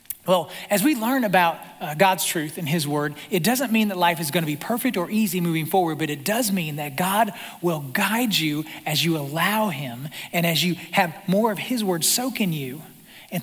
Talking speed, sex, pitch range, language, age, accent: 220 wpm, male, 175-225 Hz, English, 40-59, American